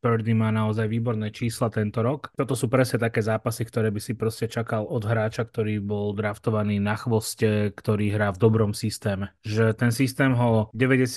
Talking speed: 185 wpm